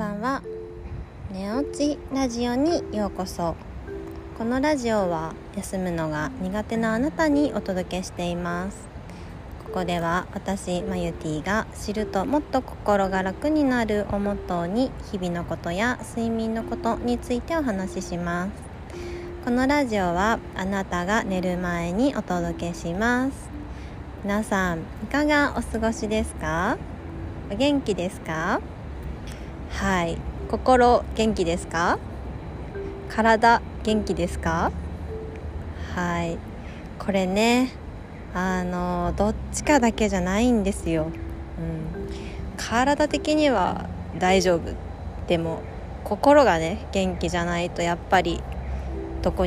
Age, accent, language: 20-39, native, Japanese